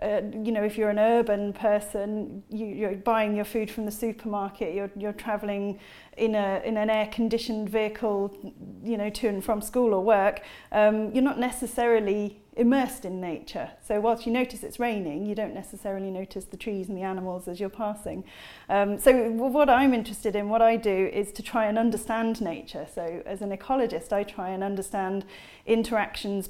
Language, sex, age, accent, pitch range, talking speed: English, female, 30-49, British, 205-230 Hz, 185 wpm